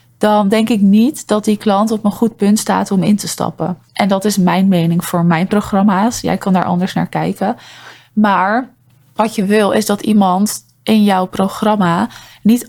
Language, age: Dutch, 20-39